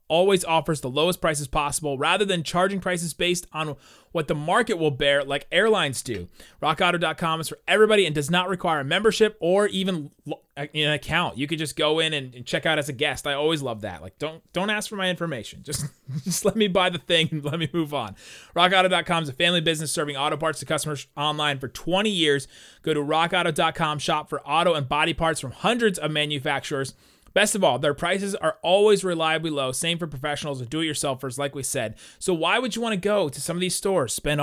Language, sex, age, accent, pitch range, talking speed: English, male, 30-49, American, 140-175 Hz, 220 wpm